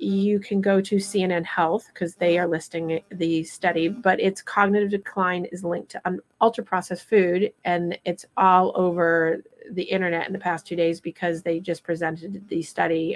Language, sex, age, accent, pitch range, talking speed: English, female, 30-49, American, 165-190 Hz, 180 wpm